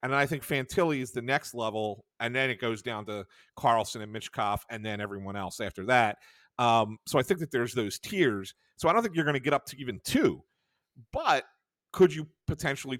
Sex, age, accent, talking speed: male, 40-59, American, 215 wpm